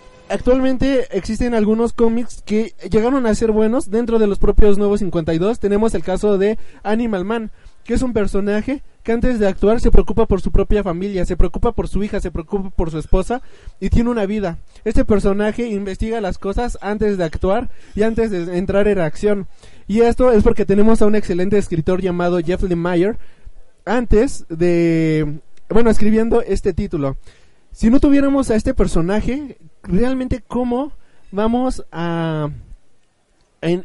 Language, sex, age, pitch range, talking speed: Spanish, male, 20-39, 185-225 Hz, 165 wpm